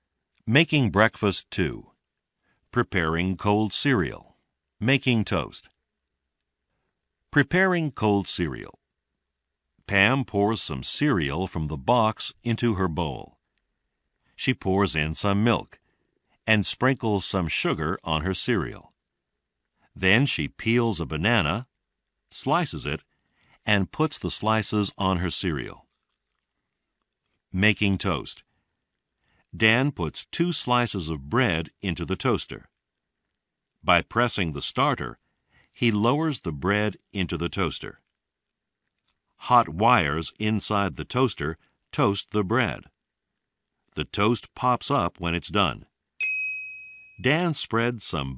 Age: 60-79